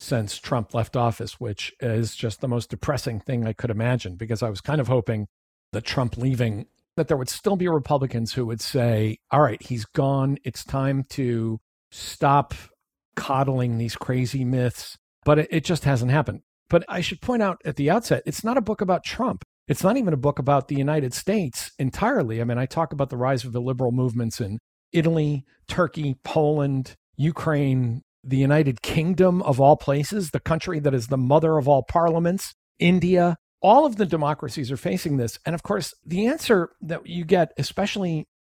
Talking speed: 190 wpm